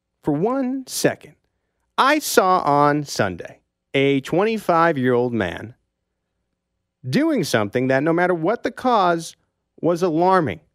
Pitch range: 110-170 Hz